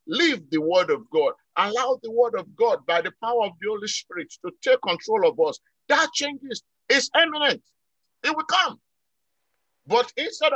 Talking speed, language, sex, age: 175 wpm, English, male, 50-69